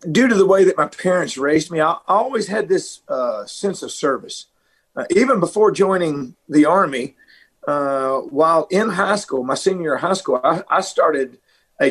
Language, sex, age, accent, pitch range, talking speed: English, male, 50-69, American, 155-215 Hz, 190 wpm